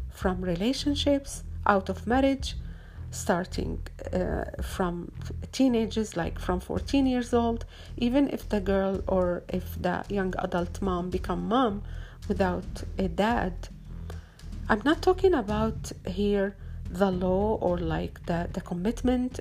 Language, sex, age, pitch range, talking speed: Arabic, female, 50-69, 180-230 Hz, 125 wpm